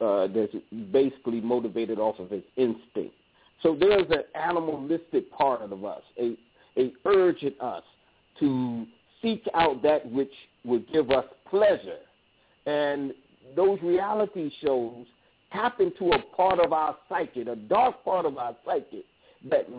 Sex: male